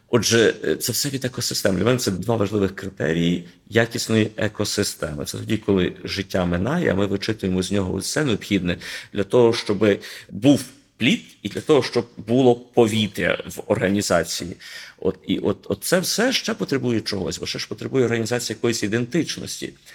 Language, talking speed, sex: Ukrainian, 160 wpm, male